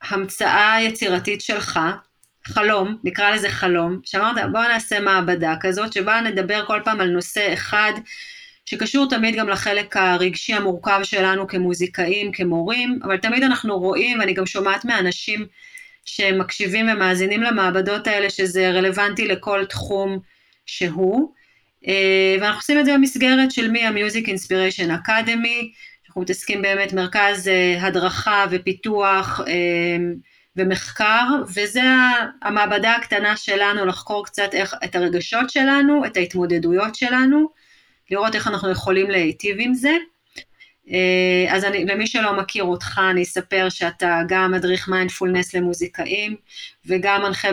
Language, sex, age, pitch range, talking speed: English, female, 30-49, 185-220 Hz, 120 wpm